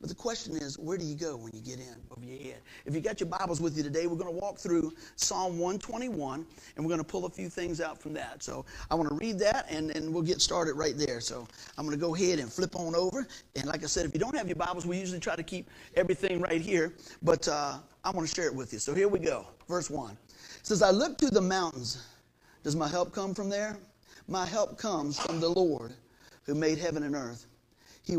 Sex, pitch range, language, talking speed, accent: male, 130-180 Hz, English, 260 wpm, American